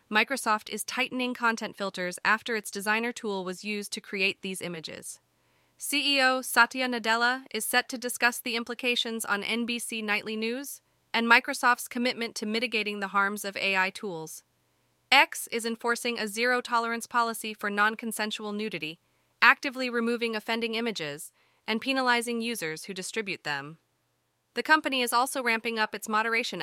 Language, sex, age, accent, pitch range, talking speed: English, female, 30-49, American, 185-235 Hz, 145 wpm